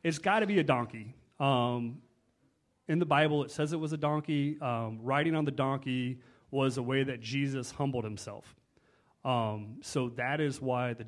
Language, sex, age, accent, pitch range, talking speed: English, male, 30-49, American, 120-150 Hz, 185 wpm